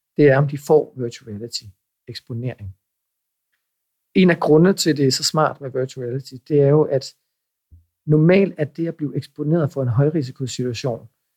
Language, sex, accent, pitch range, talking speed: Danish, male, native, 130-160 Hz, 165 wpm